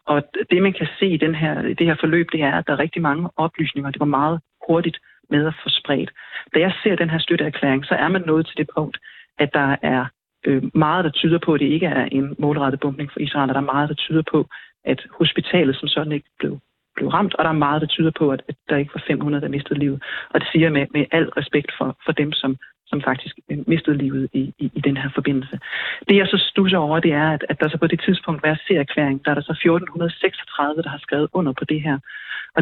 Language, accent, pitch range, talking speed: Danish, native, 145-170 Hz, 260 wpm